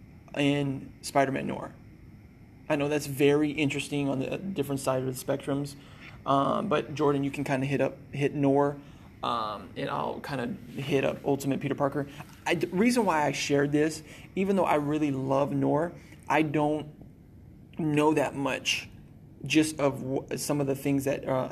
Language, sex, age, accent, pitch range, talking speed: English, male, 20-39, American, 135-150 Hz, 175 wpm